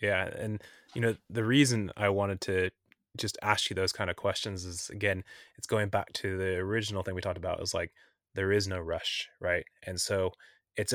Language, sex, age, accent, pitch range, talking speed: English, male, 20-39, American, 95-110 Hz, 210 wpm